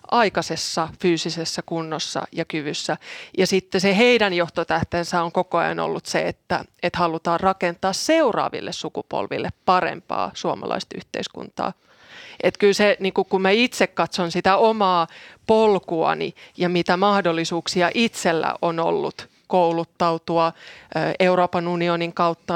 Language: Finnish